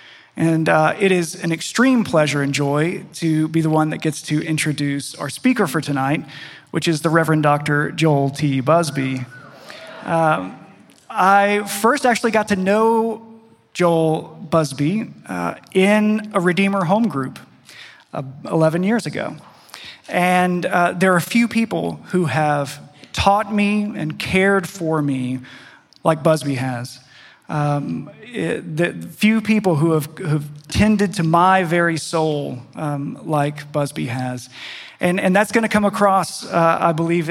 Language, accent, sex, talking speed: English, American, male, 150 wpm